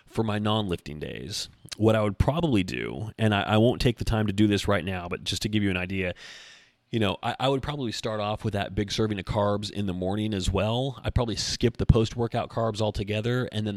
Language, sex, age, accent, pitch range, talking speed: English, male, 30-49, American, 95-115 Hz, 245 wpm